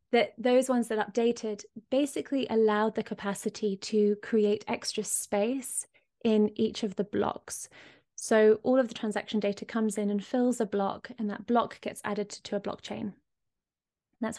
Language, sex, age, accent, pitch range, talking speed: English, female, 20-39, British, 205-230 Hz, 165 wpm